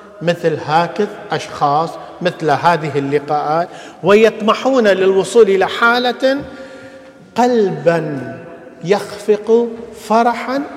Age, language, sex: 50-69, English, male